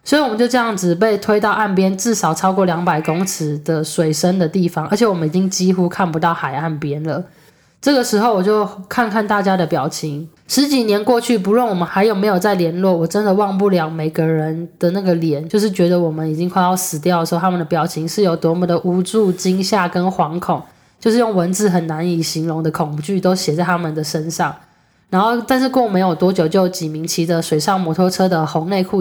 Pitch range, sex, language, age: 165-205 Hz, female, Chinese, 10-29